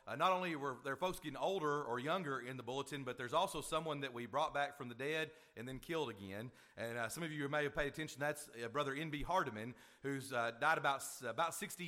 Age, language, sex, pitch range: 40-59, English, male, 125-160 Hz